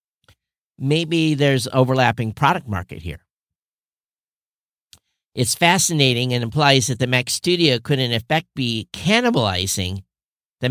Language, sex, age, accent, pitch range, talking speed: English, male, 50-69, American, 115-145 Hz, 110 wpm